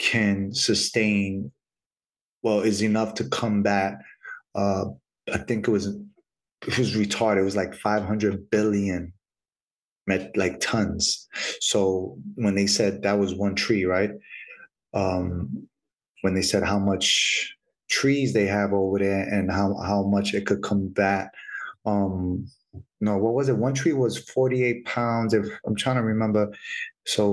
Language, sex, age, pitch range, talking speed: English, male, 30-49, 100-110 Hz, 150 wpm